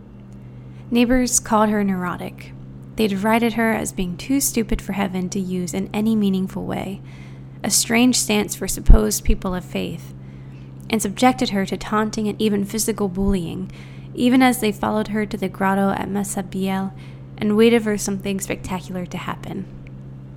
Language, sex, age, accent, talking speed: English, female, 10-29, American, 155 wpm